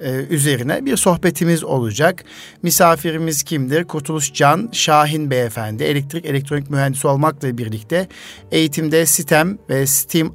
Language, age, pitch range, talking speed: Turkish, 50-69, 135-165 Hz, 105 wpm